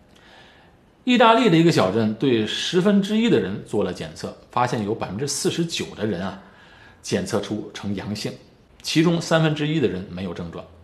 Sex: male